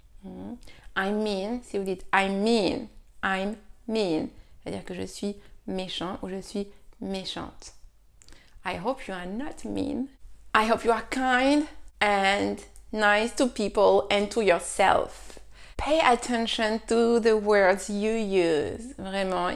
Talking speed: 135 wpm